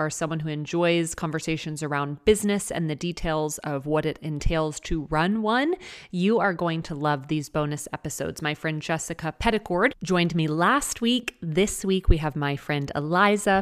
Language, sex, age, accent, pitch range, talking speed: English, female, 30-49, American, 150-180 Hz, 175 wpm